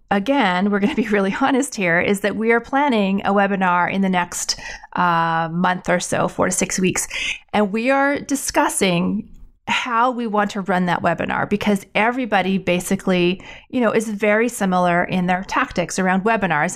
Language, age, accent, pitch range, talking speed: English, 30-49, American, 180-225 Hz, 175 wpm